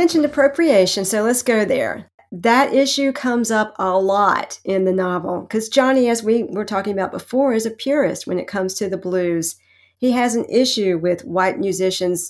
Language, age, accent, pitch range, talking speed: English, 50-69, American, 185-240 Hz, 190 wpm